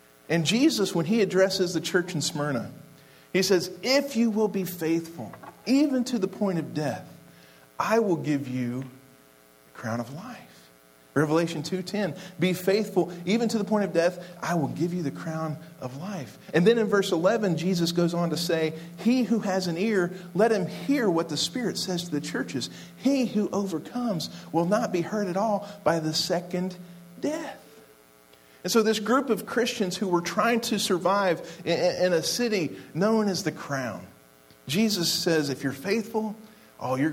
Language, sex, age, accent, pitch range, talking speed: English, male, 50-69, American, 145-200 Hz, 180 wpm